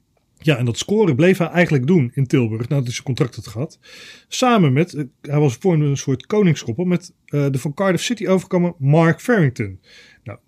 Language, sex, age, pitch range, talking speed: Dutch, male, 40-59, 130-170 Hz, 190 wpm